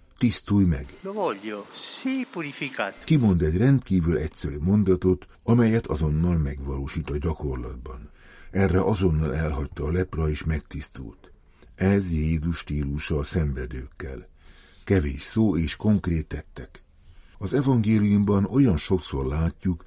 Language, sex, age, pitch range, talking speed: Hungarian, male, 60-79, 75-95 Hz, 105 wpm